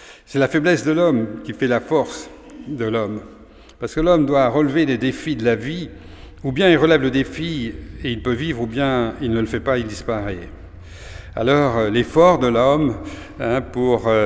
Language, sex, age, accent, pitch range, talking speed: French, male, 50-69, French, 110-140 Hz, 190 wpm